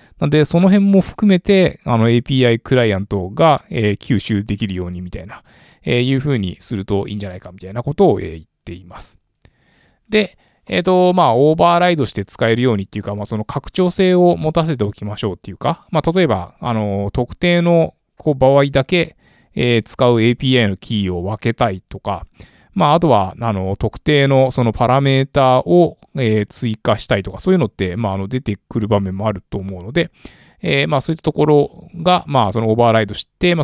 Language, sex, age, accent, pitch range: Japanese, male, 20-39, native, 100-145 Hz